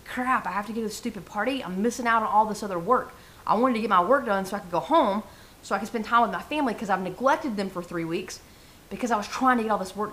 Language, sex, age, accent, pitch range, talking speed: English, female, 30-49, American, 210-265 Hz, 315 wpm